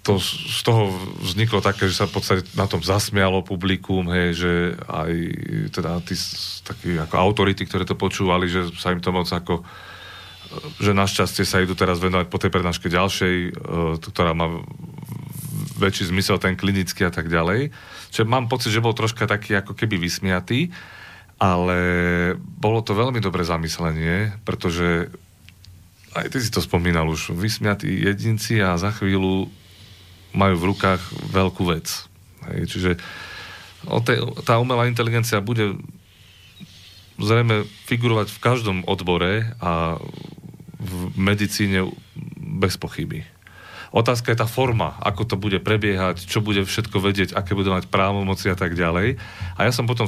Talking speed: 145 wpm